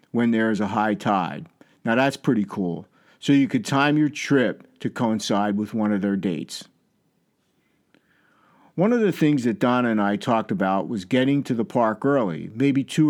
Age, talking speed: 50-69, 190 wpm